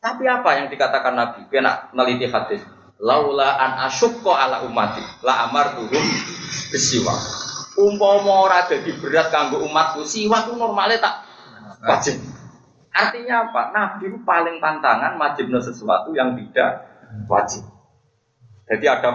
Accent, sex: native, male